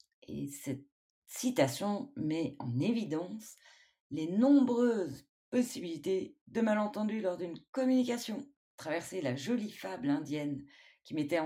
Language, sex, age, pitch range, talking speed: French, female, 30-49, 145-230 Hz, 110 wpm